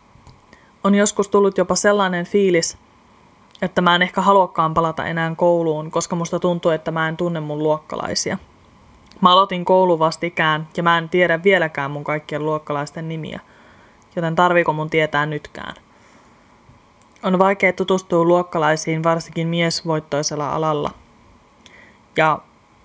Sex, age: female, 20-39